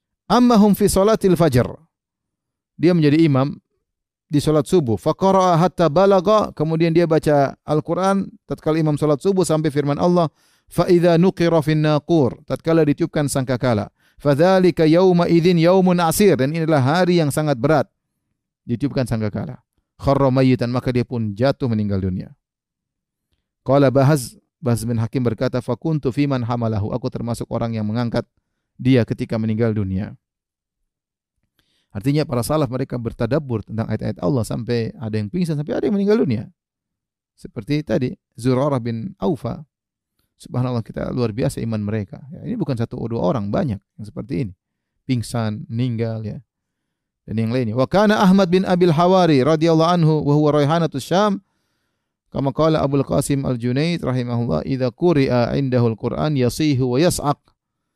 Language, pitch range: Indonesian, 120-165 Hz